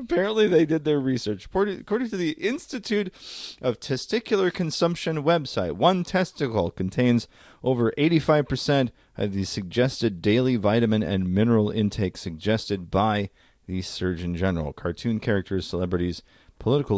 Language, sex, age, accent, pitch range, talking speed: English, male, 40-59, American, 85-120 Hz, 125 wpm